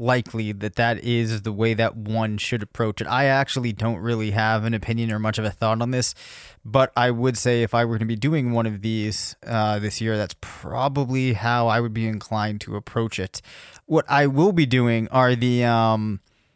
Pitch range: 110-135 Hz